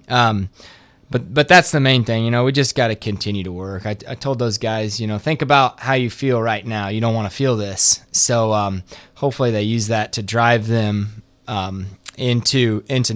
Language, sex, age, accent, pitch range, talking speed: English, male, 20-39, American, 105-120 Hz, 220 wpm